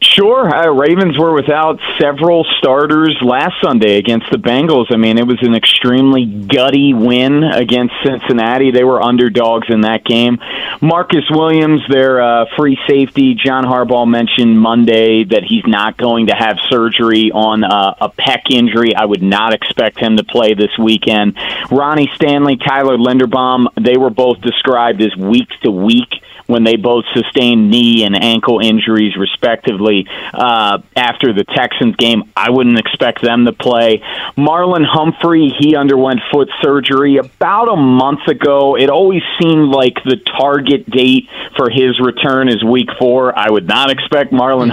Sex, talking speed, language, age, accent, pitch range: male, 155 wpm, English, 30-49, American, 115-140 Hz